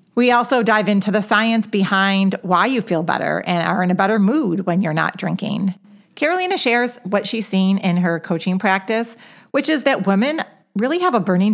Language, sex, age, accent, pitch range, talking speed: English, female, 40-59, American, 180-230 Hz, 200 wpm